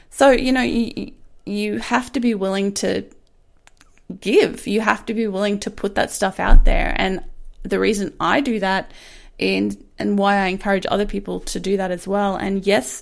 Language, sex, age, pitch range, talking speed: English, female, 20-39, 190-230 Hz, 195 wpm